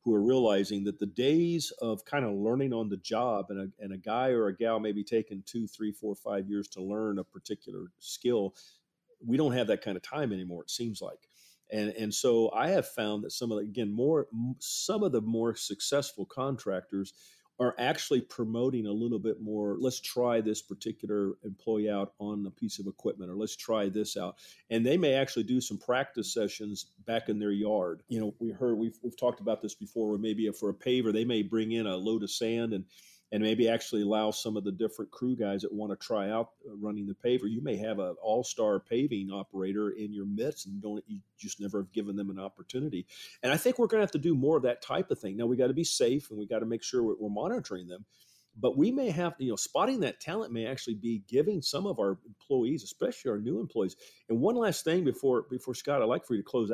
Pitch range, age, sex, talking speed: 105-125 Hz, 50-69, male, 235 wpm